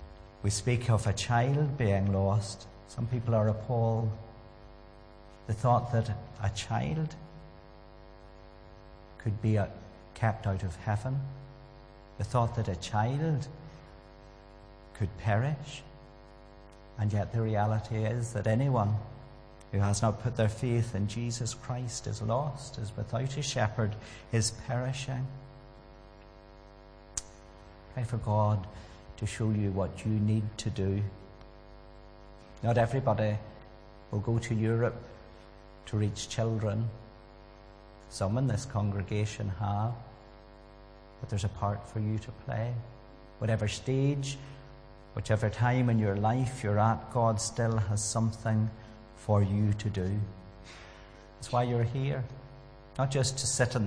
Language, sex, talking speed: English, male, 125 wpm